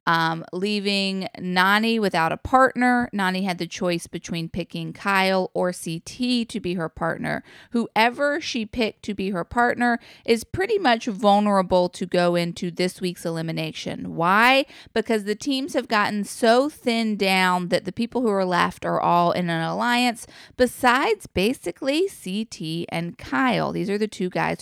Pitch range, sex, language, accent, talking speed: 170-230 Hz, female, English, American, 160 wpm